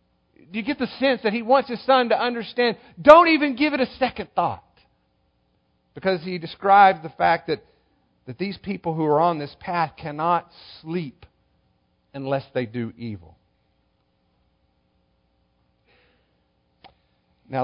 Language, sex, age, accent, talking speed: English, male, 50-69, American, 135 wpm